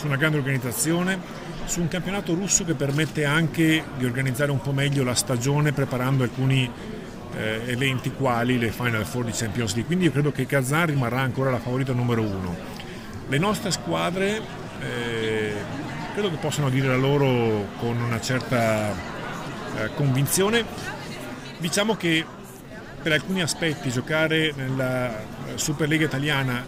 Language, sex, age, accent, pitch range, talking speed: Italian, male, 40-59, native, 125-160 Hz, 145 wpm